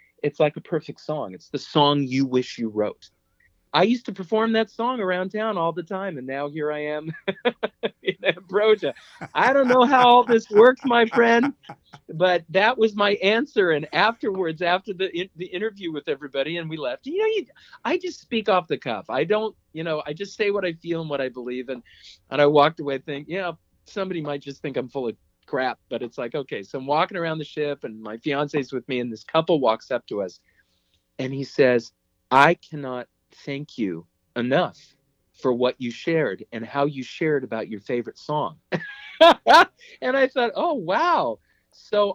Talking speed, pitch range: 205 wpm, 135-210 Hz